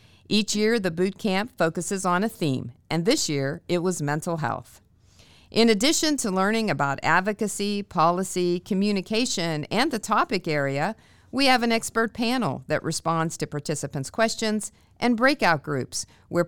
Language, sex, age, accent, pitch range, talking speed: English, female, 50-69, American, 150-210 Hz, 155 wpm